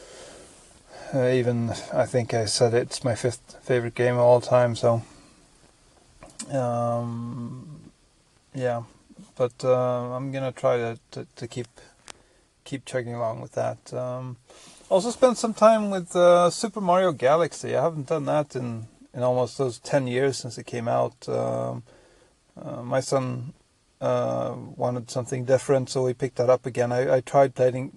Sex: male